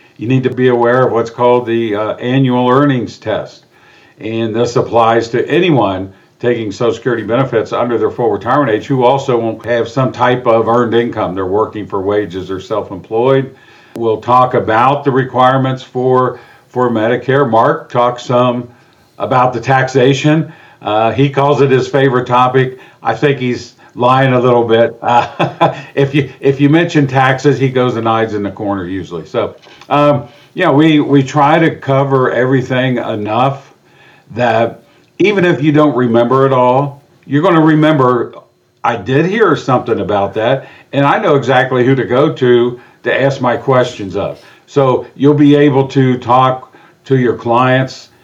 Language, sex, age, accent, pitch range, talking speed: English, male, 50-69, American, 120-140 Hz, 170 wpm